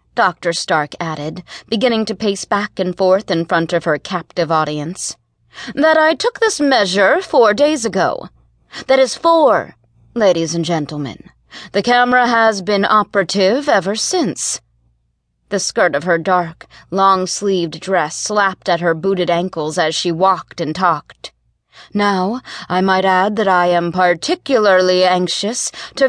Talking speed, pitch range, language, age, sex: 145 wpm, 170-240 Hz, English, 30-49, female